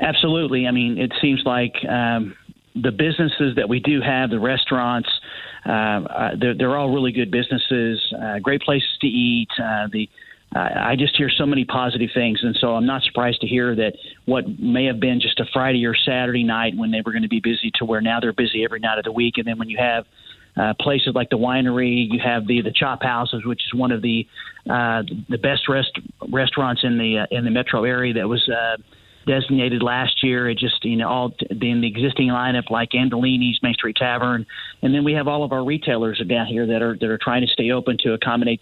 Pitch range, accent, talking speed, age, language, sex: 115-130 Hz, American, 225 wpm, 40-59, English, male